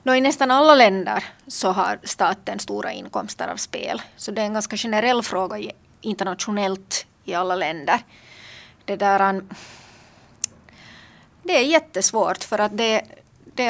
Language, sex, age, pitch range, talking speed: Finnish, female, 30-49, 190-225 Hz, 140 wpm